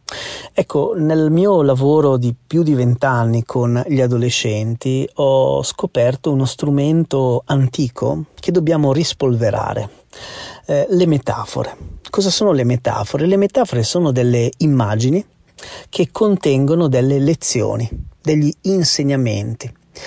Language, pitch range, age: Italian, 120-155 Hz, 40-59